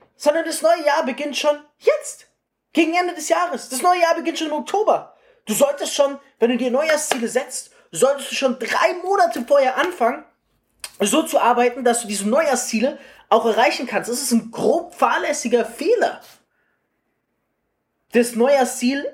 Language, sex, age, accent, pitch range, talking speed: German, male, 20-39, German, 230-305 Hz, 160 wpm